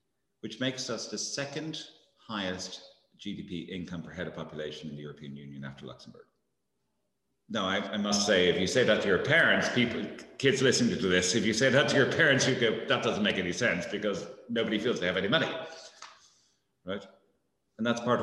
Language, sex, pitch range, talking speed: English, male, 80-120 Hz, 200 wpm